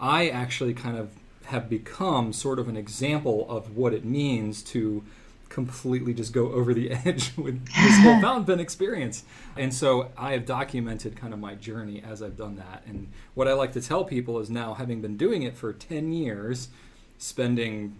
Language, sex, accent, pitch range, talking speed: English, male, American, 110-135 Hz, 185 wpm